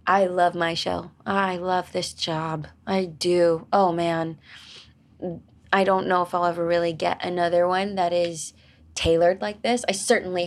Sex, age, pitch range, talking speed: female, 20-39, 175-195 Hz, 165 wpm